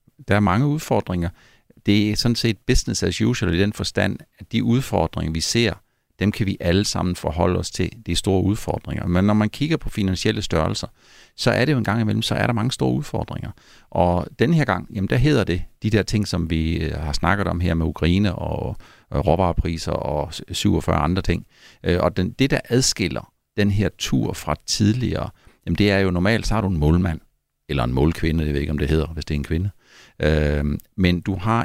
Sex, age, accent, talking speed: male, 60-79, native, 210 wpm